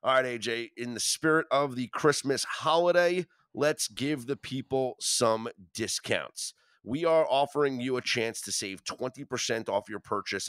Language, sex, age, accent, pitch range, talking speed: English, male, 30-49, American, 115-150 Hz, 160 wpm